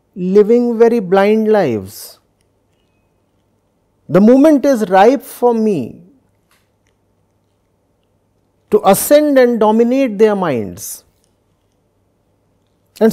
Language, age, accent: English, 50-69, Indian